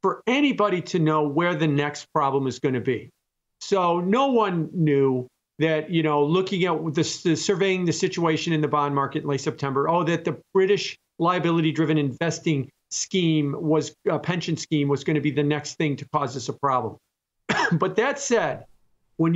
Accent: American